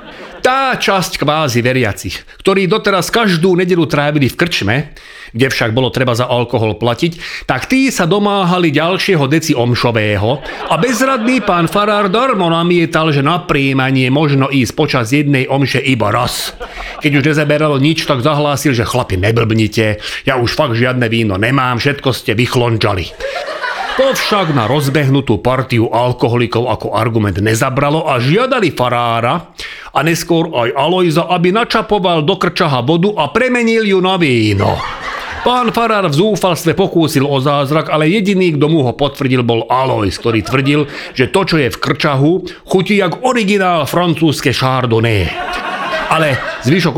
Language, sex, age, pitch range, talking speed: Slovak, male, 30-49, 125-180 Hz, 145 wpm